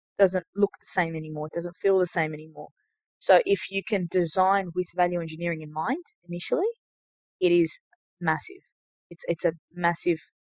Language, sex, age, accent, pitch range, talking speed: English, female, 20-39, Australian, 165-190 Hz, 165 wpm